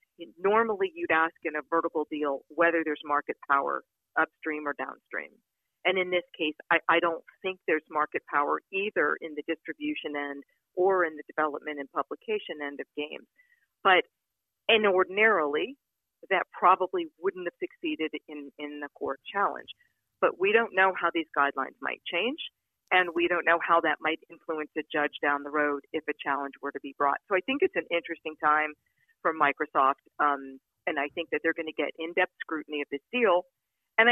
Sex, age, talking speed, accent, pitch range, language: female, 40-59, 185 wpm, American, 150-185 Hz, English